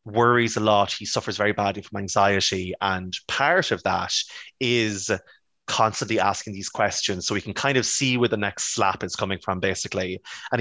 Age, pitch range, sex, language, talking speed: 20-39, 95-115 Hz, male, English, 185 wpm